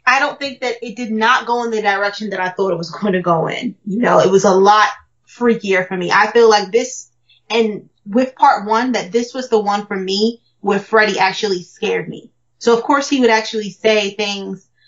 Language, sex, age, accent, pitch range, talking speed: English, female, 20-39, American, 200-255 Hz, 230 wpm